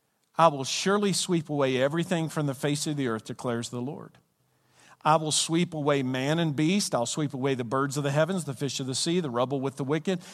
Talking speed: 230 wpm